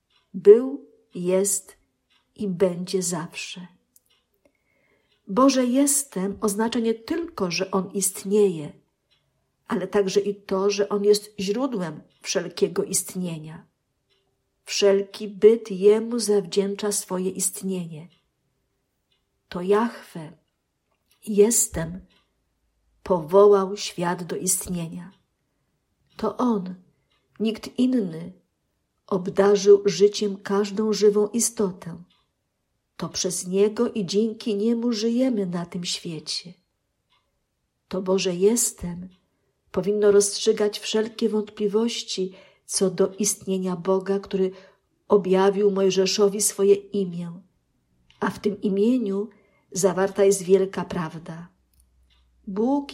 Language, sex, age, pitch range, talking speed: Polish, female, 50-69, 185-210 Hz, 90 wpm